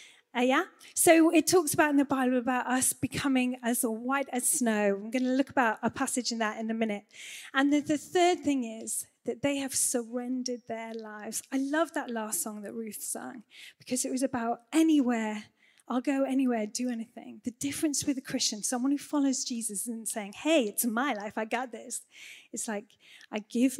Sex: female